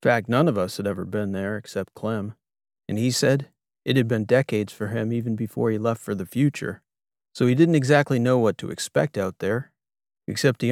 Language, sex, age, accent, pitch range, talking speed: English, male, 40-59, American, 105-125 Hz, 220 wpm